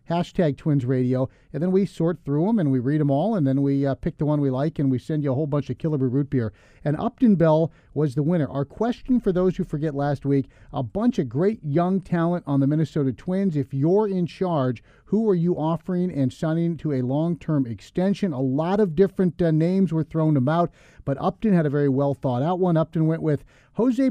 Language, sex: English, male